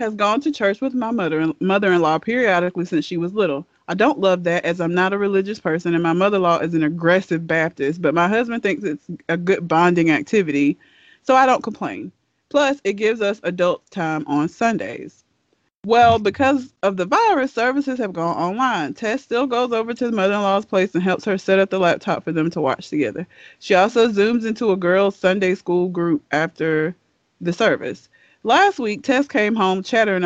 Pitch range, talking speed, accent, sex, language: 170-225 Hz, 195 wpm, American, female, English